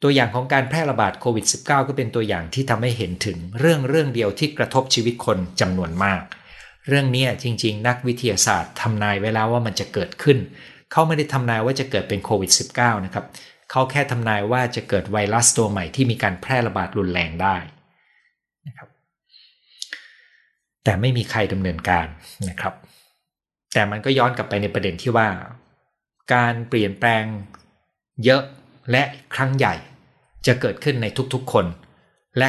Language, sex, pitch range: Thai, male, 100-130 Hz